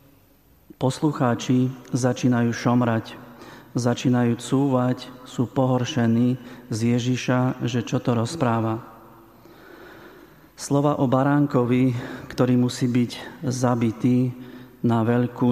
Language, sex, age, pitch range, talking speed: Slovak, male, 40-59, 120-130 Hz, 85 wpm